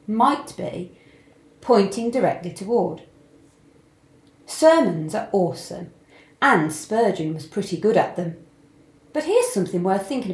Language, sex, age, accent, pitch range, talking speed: English, female, 40-59, British, 155-230 Hz, 115 wpm